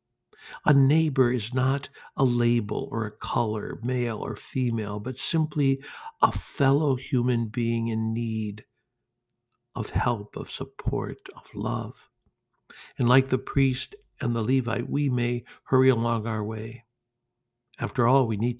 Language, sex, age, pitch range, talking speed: English, male, 60-79, 110-135 Hz, 140 wpm